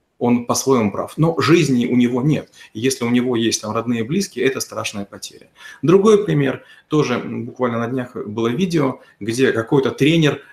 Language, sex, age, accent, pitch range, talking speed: Russian, male, 30-49, native, 120-150 Hz, 165 wpm